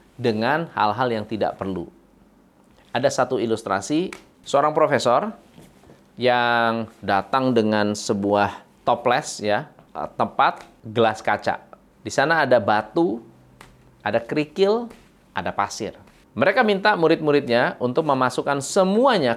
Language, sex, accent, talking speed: Indonesian, male, native, 100 wpm